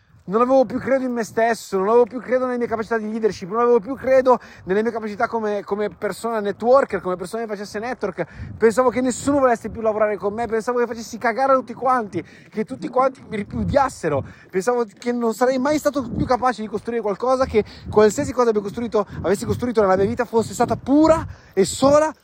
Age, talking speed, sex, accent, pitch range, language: 30-49, 210 wpm, male, native, 185-245 Hz, Italian